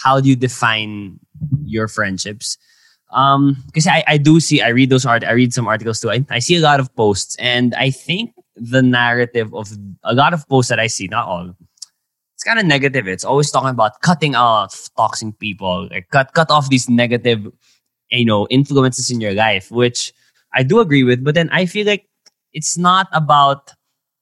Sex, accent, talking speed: male, Filipino, 200 wpm